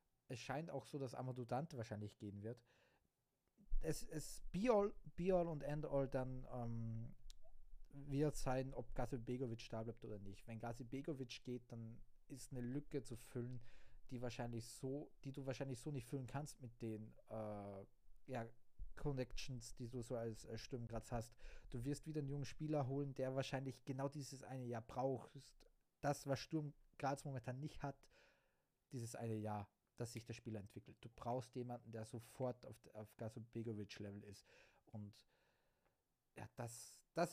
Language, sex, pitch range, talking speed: German, male, 115-135 Hz, 170 wpm